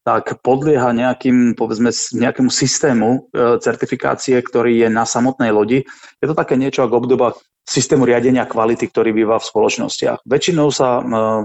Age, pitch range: 40-59, 115-130 Hz